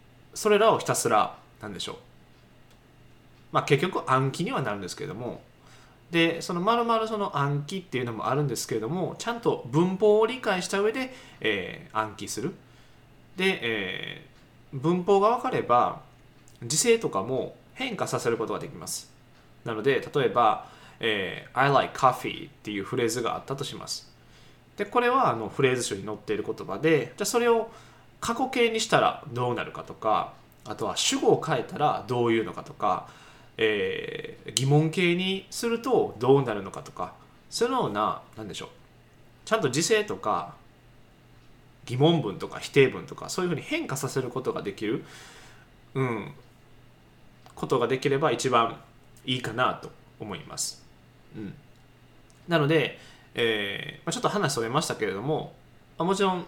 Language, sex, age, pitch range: Japanese, male, 20-39, 125-210 Hz